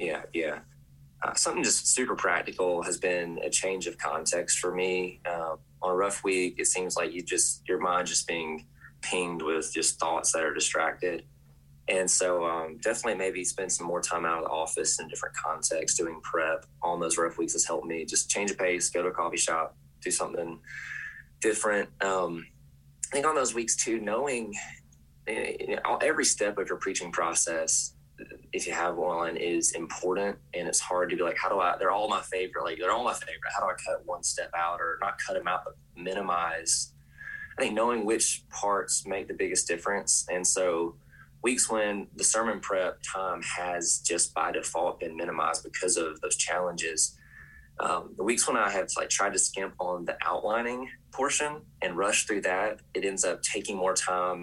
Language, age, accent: English, 20-39, American